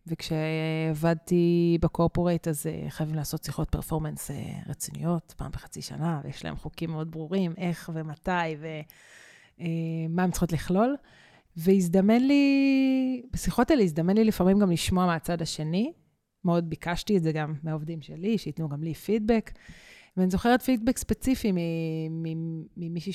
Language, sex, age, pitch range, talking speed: Hebrew, female, 30-49, 160-190 Hz, 125 wpm